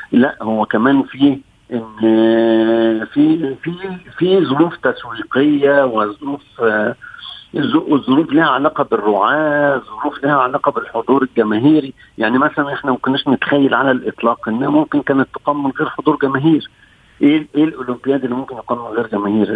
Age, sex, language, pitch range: 50-69, male, Arabic, 115-145 Hz